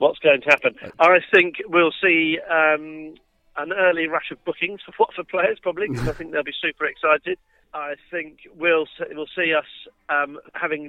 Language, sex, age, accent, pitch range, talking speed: English, male, 40-59, British, 130-155 Hz, 180 wpm